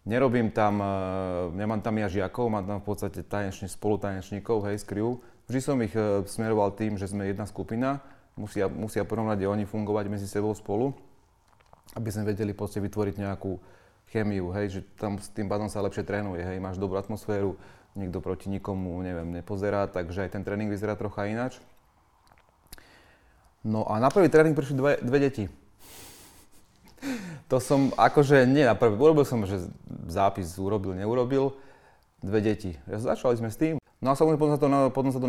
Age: 30-49